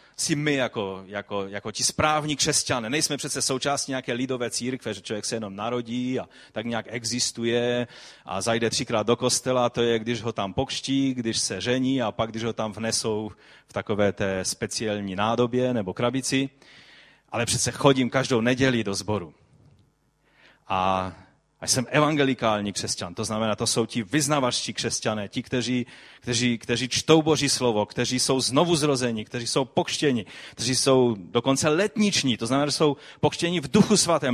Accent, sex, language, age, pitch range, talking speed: native, male, Czech, 30-49, 115-150 Hz, 165 wpm